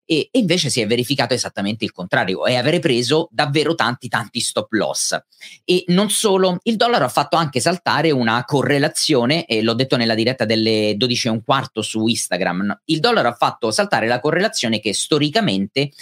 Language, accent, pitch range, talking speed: Italian, native, 115-155 Hz, 180 wpm